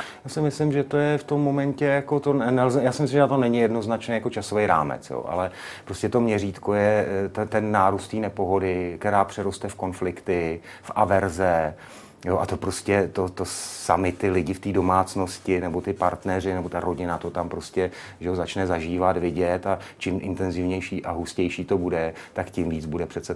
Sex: male